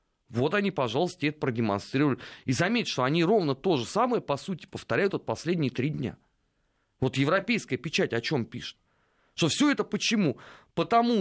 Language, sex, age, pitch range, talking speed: Russian, male, 30-49, 145-195 Hz, 170 wpm